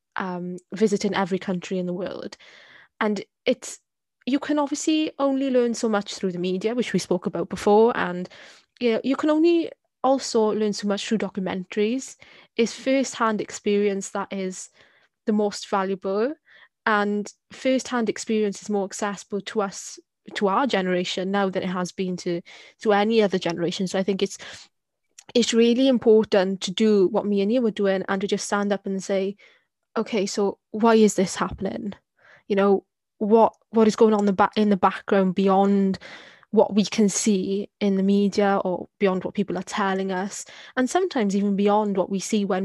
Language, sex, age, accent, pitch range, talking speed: English, female, 20-39, British, 190-220 Hz, 180 wpm